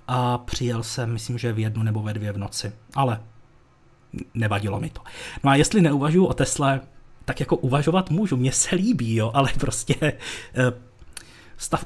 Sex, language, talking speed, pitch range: male, Czech, 165 wpm, 125-165 Hz